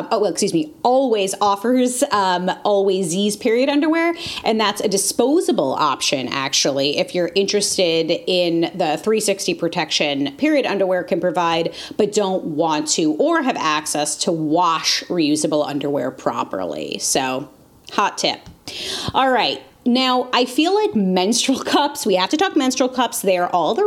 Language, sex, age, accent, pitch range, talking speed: English, female, 30-49, American, 175-265 Hz, 155 wpm